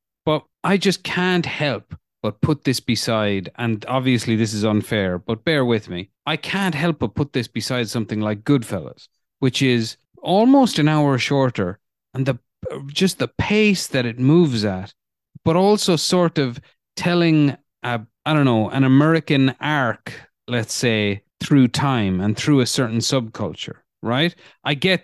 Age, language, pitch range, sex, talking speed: 30-49, English, 115-155 Hz, male, 160 wpm